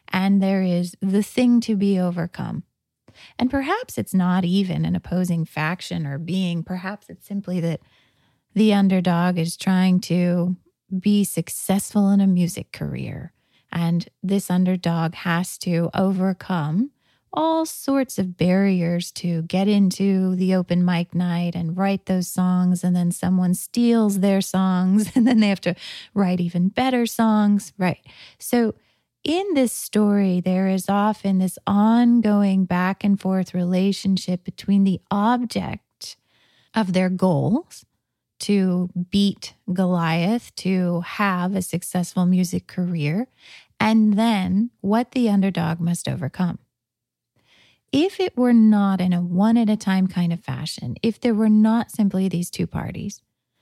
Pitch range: 175-210 Hz